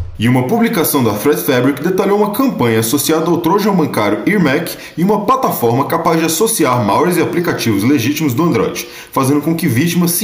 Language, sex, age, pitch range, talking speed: Portuguese, male, 20-39, 125-175 Hz, 180 wpm